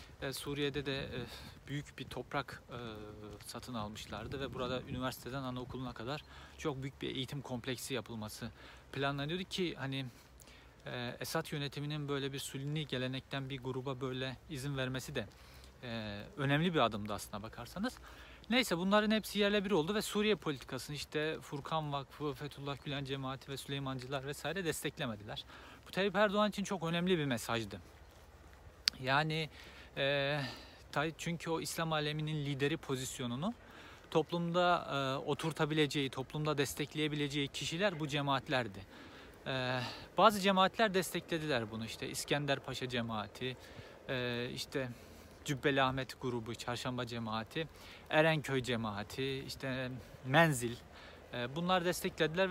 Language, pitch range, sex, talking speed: Turkish, 120-155 Hz, male, 110 wpm